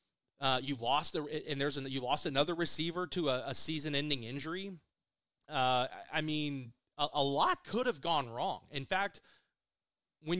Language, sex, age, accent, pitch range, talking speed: English, male, 30-49, American, 125-150 Hz, 175 wpm